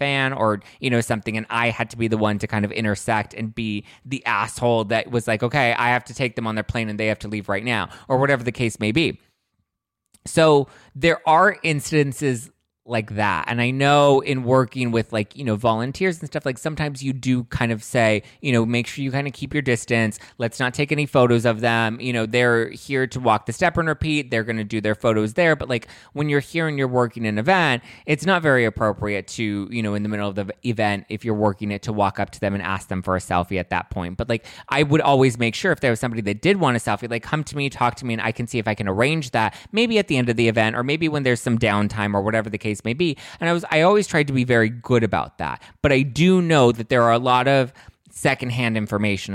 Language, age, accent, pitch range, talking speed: English, 20-39, American, 105-130 Hz, 270 wpm